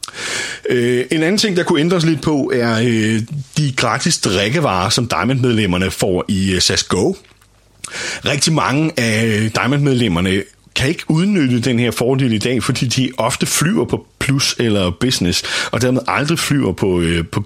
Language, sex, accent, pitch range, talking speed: Danish, male, native, 100-130 Hz, 150 wpm